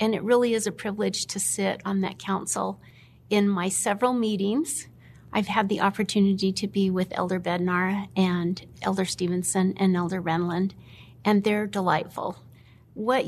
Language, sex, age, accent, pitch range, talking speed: English, female, 50-69, American, 190-230 Hz, 155 wpm